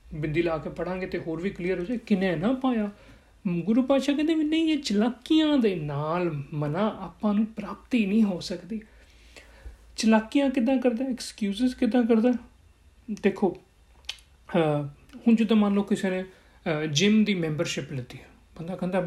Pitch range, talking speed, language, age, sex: 160-215 Hz, 160 wpm, Punjabi, 40-59, male